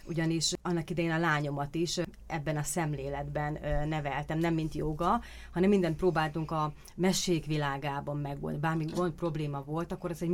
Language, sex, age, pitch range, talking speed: Hungarian, female, 30-49, 150-180 Hz, 155 wpm